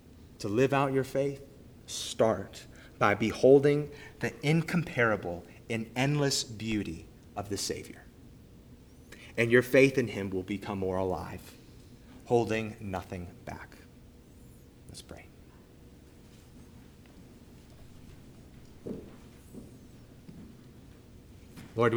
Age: 30-49